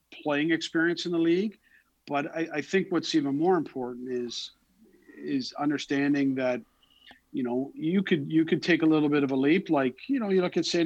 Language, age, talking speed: English, 50-69, 205 wpm